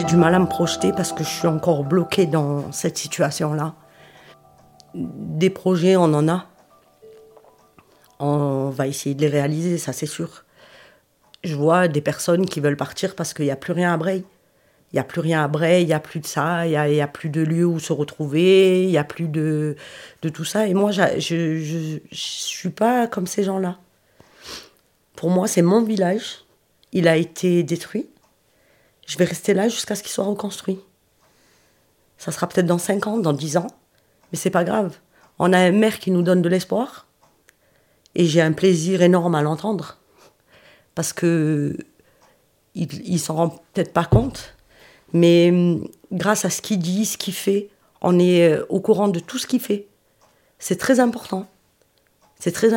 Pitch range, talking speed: 160-190 Hz, 185 wpm